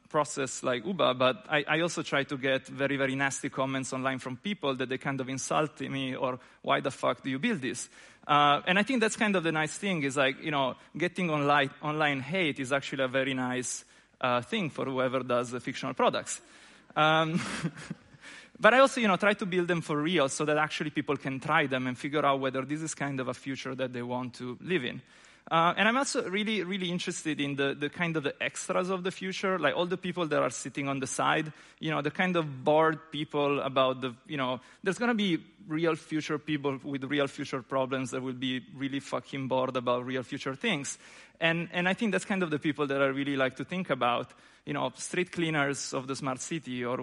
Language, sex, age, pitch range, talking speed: English, male, 30-49, 135-175 Hz, 230 wpm